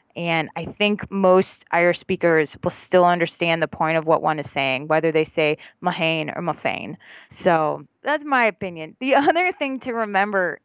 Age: 20-39